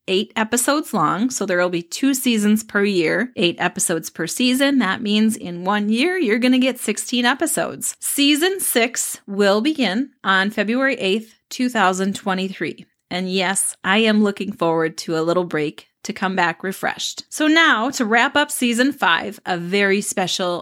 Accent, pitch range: American, 180-240 Hz